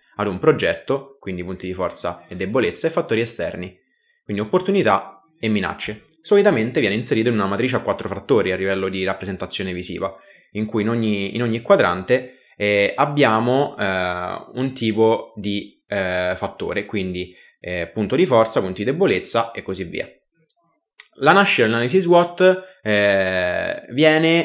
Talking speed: 145 wpm